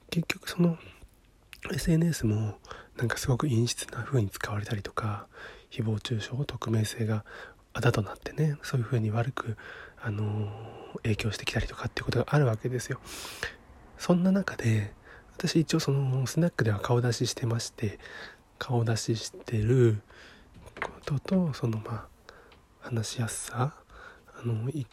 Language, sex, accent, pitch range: Japanese, male, native, 115-140 Hz